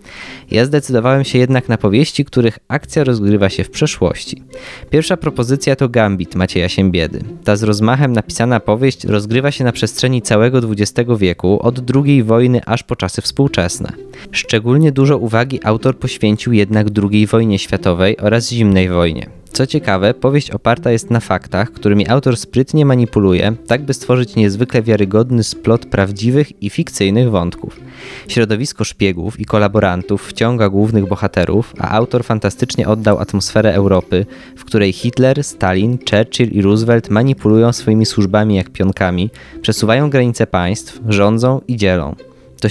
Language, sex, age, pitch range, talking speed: Polish, male, 20-39, 100-125 Hz, 145 wpm